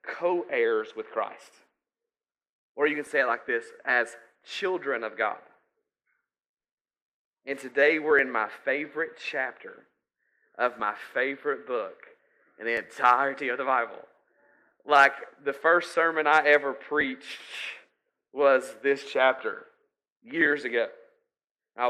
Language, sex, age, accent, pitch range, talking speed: English, male, 30-49, American, 125-175 Hz, 120 wpm